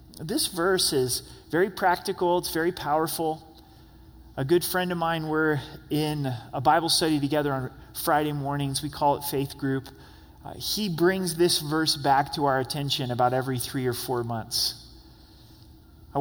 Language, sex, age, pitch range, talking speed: English, male, 30-49, 135-175 Hz, 160 wpm